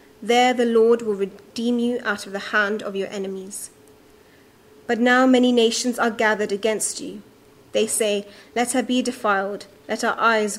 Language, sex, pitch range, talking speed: English, female, 205-235 Hz, 170 wpm